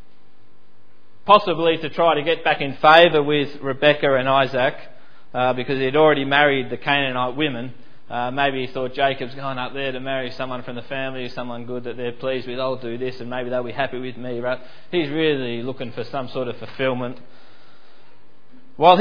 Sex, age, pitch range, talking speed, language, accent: male, 20-39, 130-165 Hz, 190 wpm, English, Australian